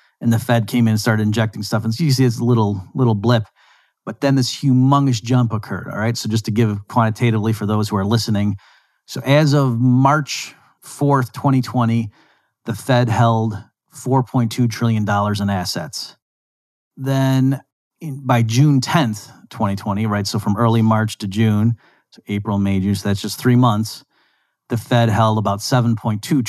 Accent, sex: American, male